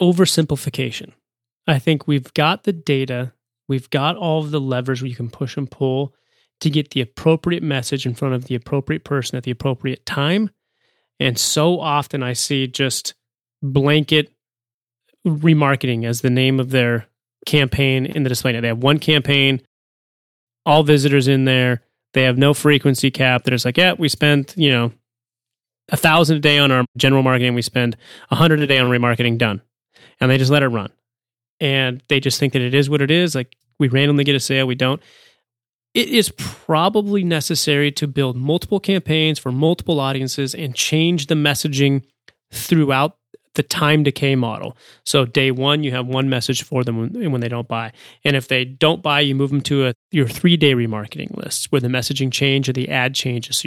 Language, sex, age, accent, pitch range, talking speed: English, male, 30-49, American, 125-150 Hz, 190 wpm